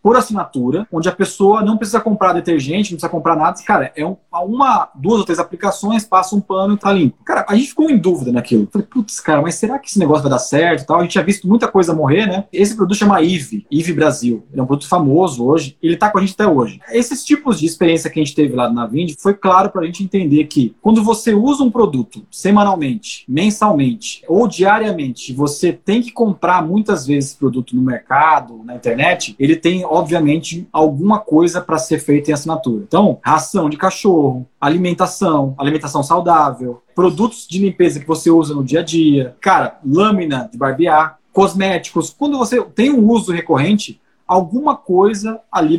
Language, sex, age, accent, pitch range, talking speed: Portuguese, male, 20-39, Brazilian, 155-215 Hz, 200 wpm